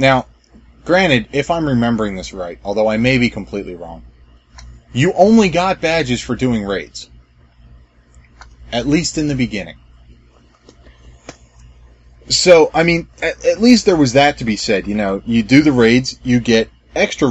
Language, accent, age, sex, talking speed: English, American, 30-49, male, 160 wpm